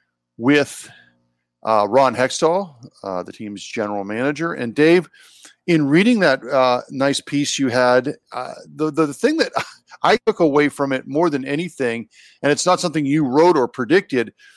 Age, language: 50-69, English